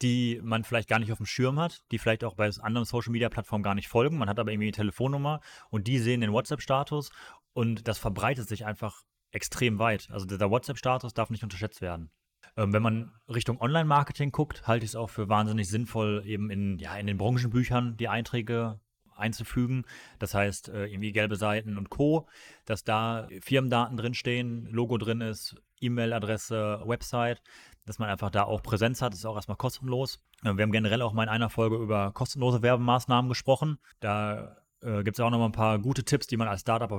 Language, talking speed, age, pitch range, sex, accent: German, 190 wpm, 30-49, 105-125 Hz, male, German